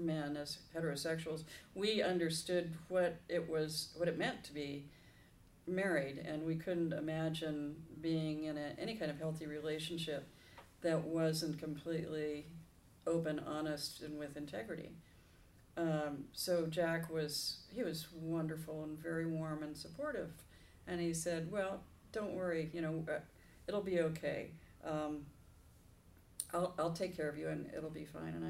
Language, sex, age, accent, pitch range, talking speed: English, female, 50-69, American, 150-165 Hz, 145 wpm